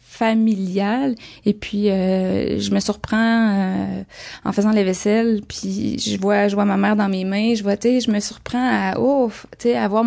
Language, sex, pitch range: English, female, 195-220 Hz